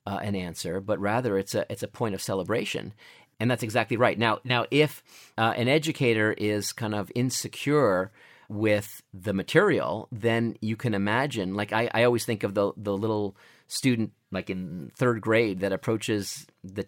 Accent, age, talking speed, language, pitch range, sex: American, 40-59, 180 wpm, English, 105-135 Hz, male